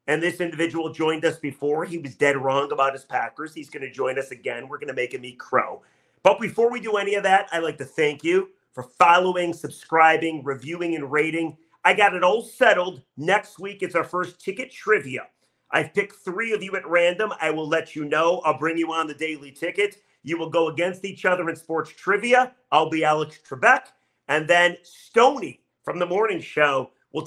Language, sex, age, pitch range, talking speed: English, male, 40-59, 155-200 Hz, 210 wpm